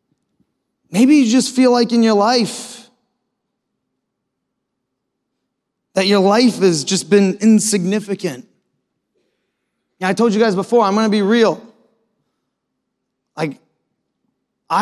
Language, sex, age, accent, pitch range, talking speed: English, male, 30-49, American, 190-235 Hz, 110 wpm